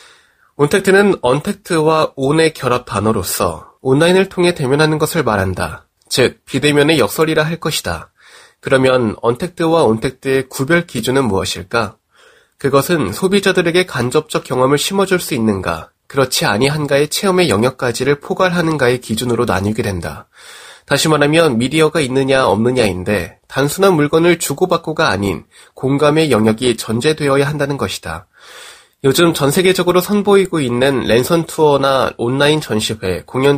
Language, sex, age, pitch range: Korean, male, 20-39, 120-170 Hz